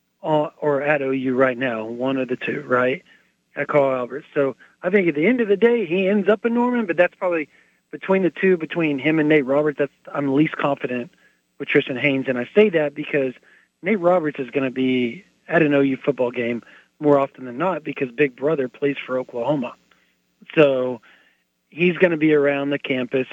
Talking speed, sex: 205 wpm, male